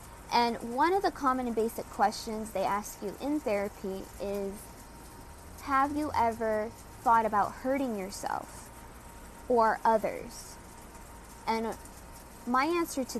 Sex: female